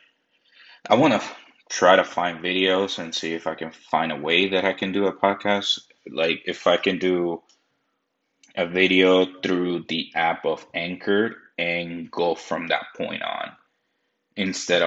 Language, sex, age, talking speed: English, male, 20-39, 160 wpm